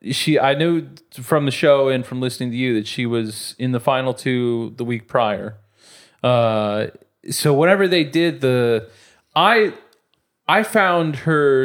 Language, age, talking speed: English, 30-49, 160 wpm